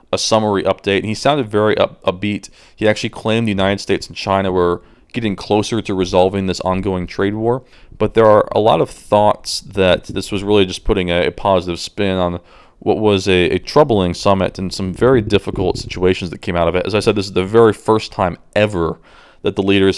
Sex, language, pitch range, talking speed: male, English, 90-105 Hz, 215 wpm